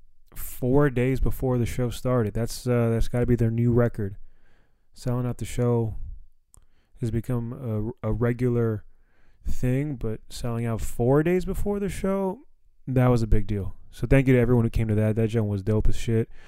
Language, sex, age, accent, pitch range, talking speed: English, male, 20-39, American, 110-125 Hz, 195 wpm